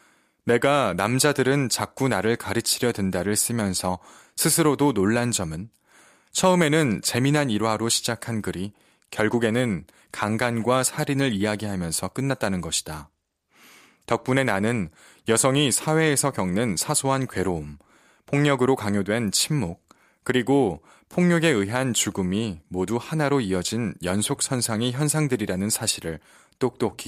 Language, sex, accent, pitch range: Korean, male, native, 95-135 Hz